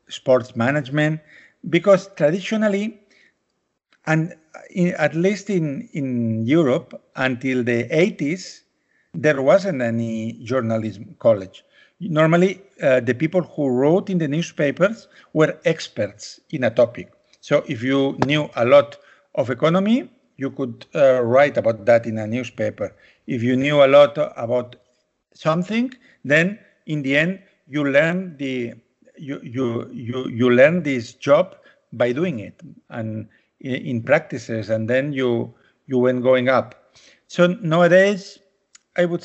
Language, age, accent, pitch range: English, 50-69, Spanish, 125-175 Hz